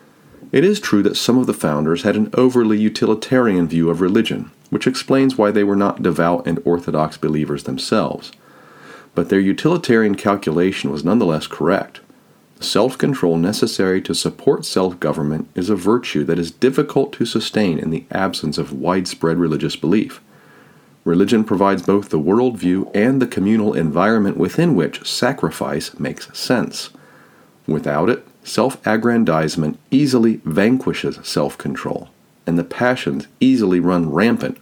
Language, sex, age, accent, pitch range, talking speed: English, male, 40-59, American, 85-115 Hz, 135 wpm